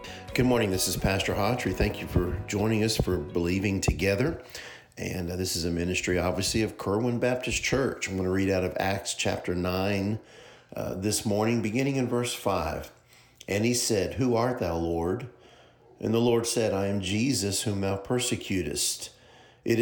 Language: English